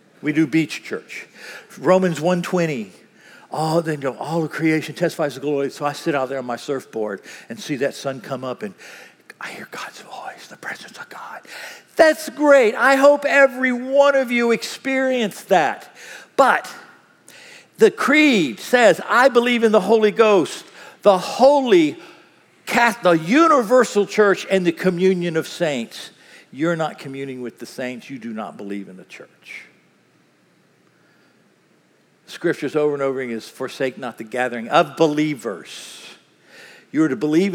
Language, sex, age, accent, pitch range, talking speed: English, male, 50-69, American, 135-225 Hz, 155 wpm